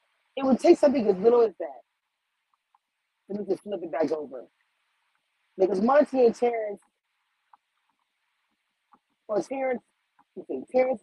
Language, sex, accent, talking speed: English, female, American, 125 wpm